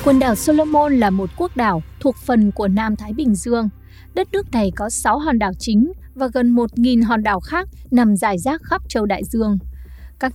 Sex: female